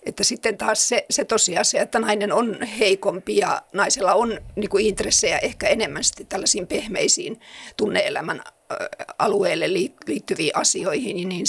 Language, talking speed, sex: Finnish, 125 wpm, female